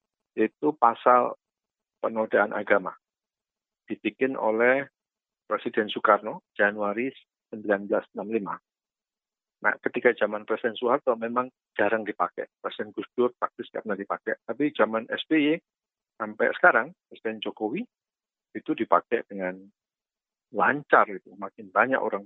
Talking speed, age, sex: 110 wpm, 50-69, male